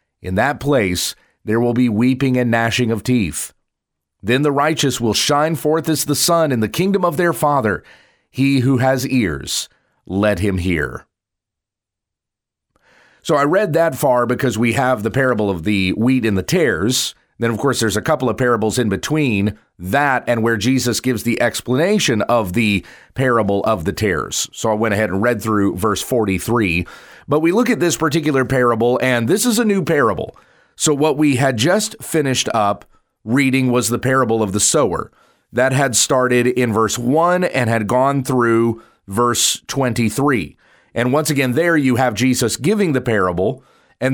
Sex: male